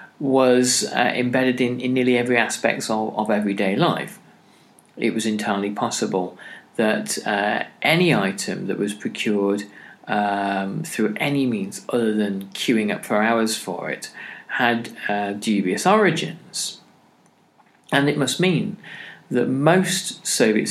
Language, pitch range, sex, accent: English, 100-150 Hz, male, British